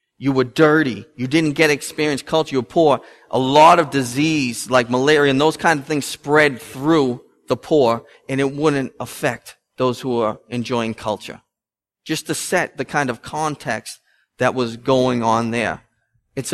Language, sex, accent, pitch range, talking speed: English, male, American, 125-160 Hz, 175 wpm